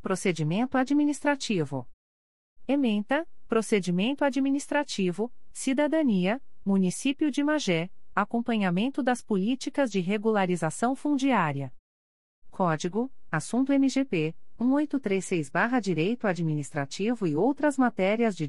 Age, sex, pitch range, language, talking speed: 40-59, female, 165-255 Hz, Portuguese, 85 wpm